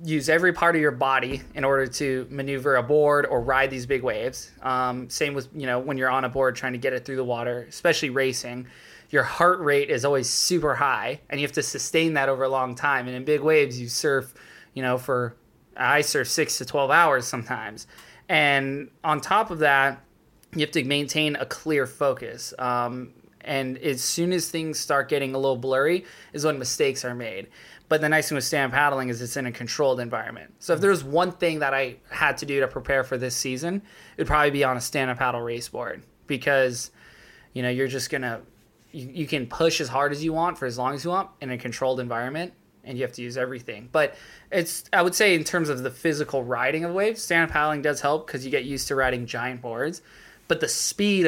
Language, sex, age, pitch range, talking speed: English, male, 20-39, 125-155 Hz, 230 wpm